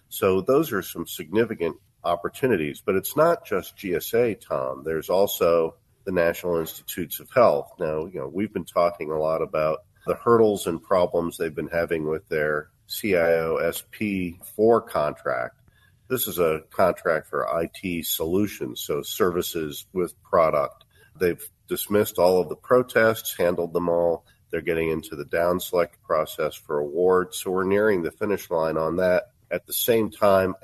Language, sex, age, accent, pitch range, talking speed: English, male, 50-69, American, 80-95 Hz, 155 wpm